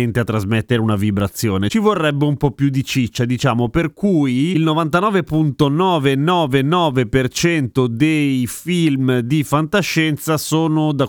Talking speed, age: 120 wpm, 30-49